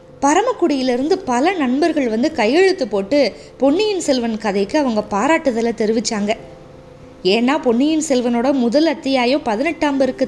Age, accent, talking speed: 20-39, native, 105 wpm